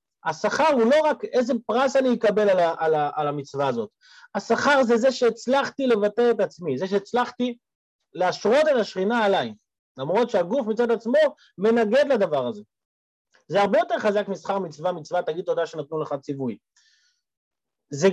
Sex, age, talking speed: male, 30-49, 160 wpm